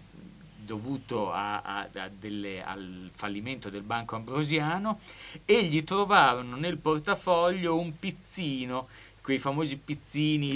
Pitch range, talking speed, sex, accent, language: 110-180 Hz, 90 wpm, male, native, Italian